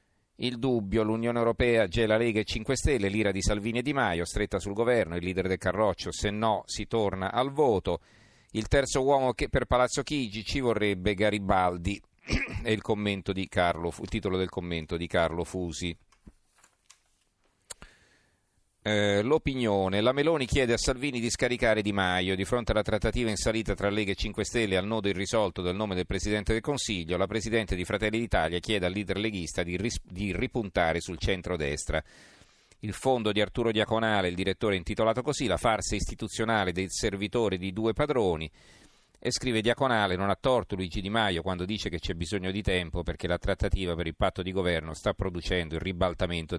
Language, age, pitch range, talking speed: Italian, 40-59, 90-115 Hz, 180 wpm